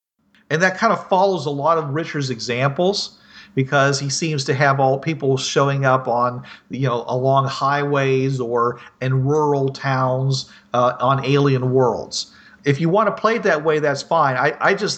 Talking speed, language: 180 wpm, English